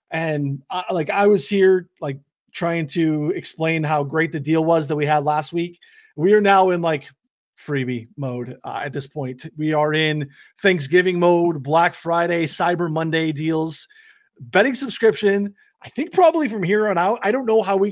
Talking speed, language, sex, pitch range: 185 wpm, English, male, 150-200 Hz